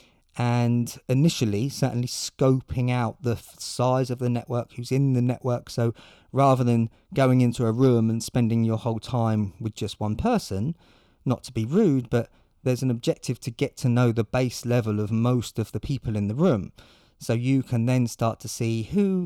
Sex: male